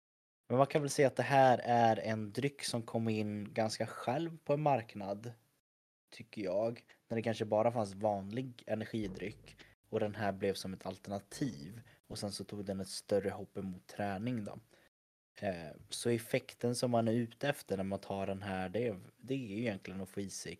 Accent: native